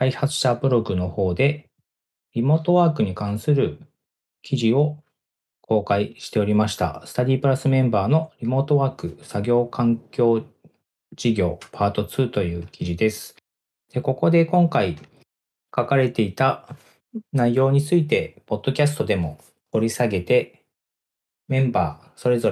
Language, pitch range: Japanese, 100-135 Hz